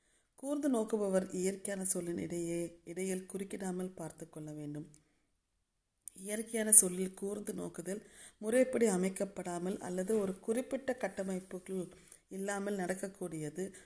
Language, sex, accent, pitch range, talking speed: Tamil, female, native, 170-205 Hz, 95 wpm